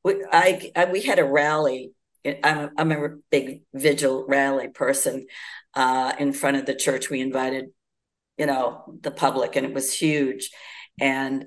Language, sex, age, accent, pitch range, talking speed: English, female, 50-69, American, 135-165 Hz, 165 wpm